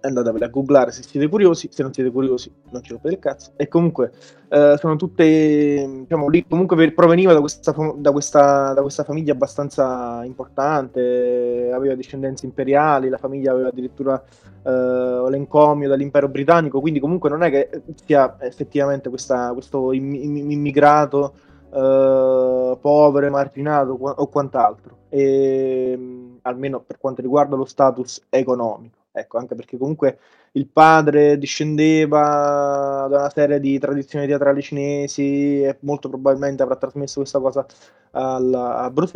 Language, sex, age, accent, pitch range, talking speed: Italian, male, 20-39, native, 130-150 Hz, 145 wpm